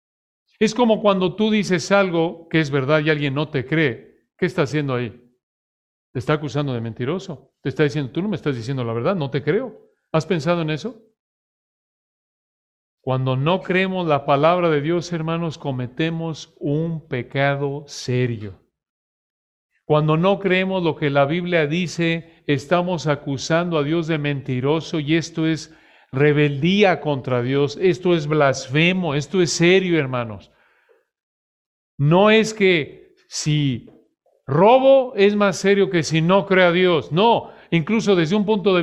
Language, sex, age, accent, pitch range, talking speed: English, male, 50-69, Mexican, 145-195 Hz, 155 wpm